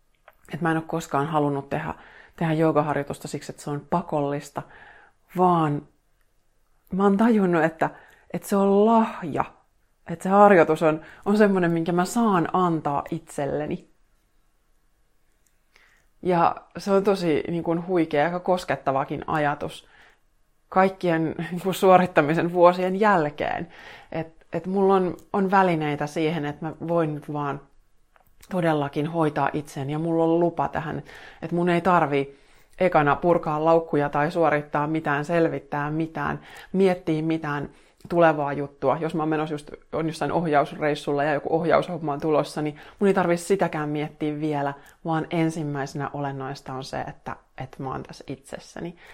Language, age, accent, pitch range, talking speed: Finnish, 30-49, native, 145-170 Hz, 140 wpm